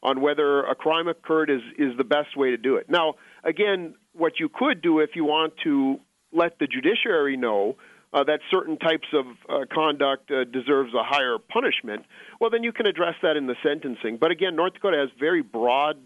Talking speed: 205 wpm